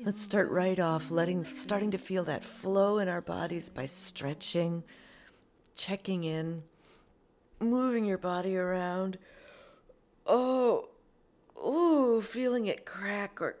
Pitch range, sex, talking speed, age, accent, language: 160-210 Hz, female, 120 wpm, 50-69, American, English